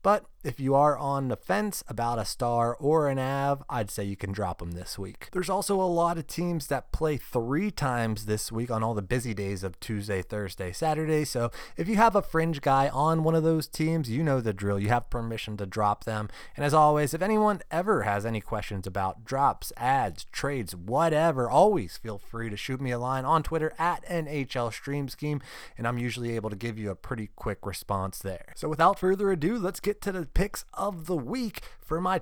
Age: 30-49